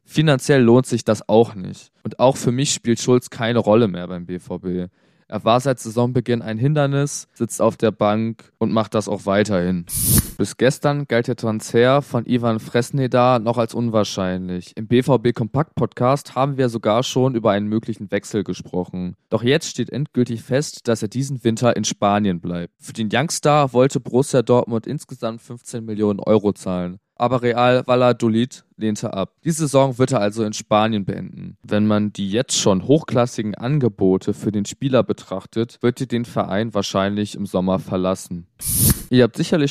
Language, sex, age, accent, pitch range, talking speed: German, male, 20-39, German, 105-130 Hz, 170 wpm